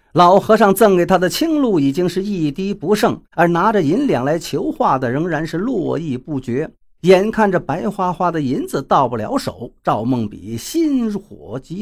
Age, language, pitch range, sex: 50-69, Chinese, 160-235 Hz, male